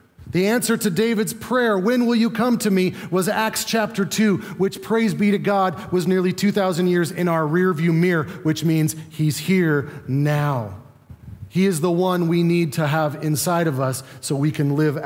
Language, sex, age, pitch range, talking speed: English, male, 30-49, 130-180 Hz, 190 wpm